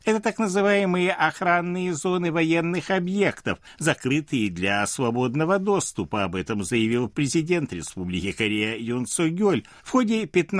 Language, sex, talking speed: Russian, male, 120 wpm